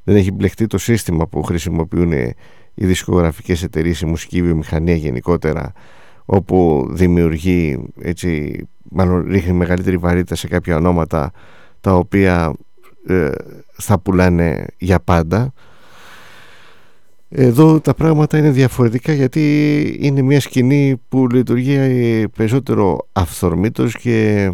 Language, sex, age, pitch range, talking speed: English, male, 50-69, 85-110 Hz, 105 wpm